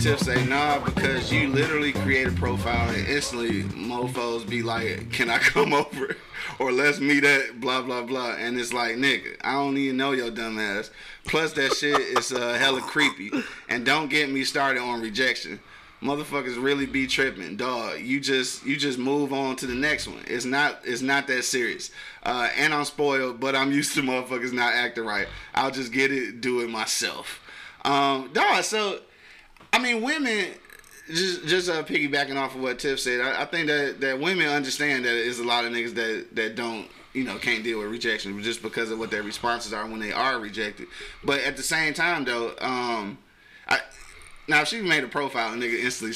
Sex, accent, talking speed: male, American, 200 wpm